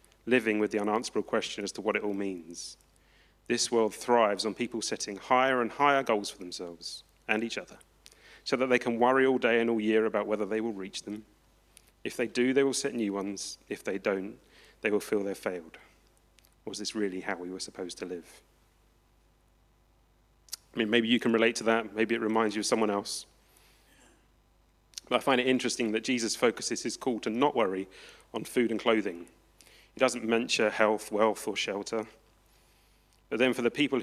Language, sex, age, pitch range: English, male, 30-49, 95-120 Hz